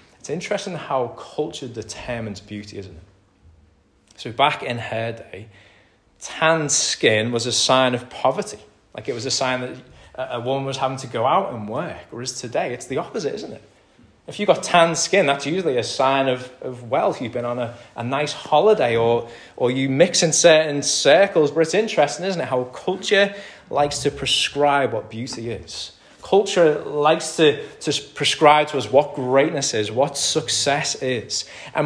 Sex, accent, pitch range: male, British, 105-145 Hz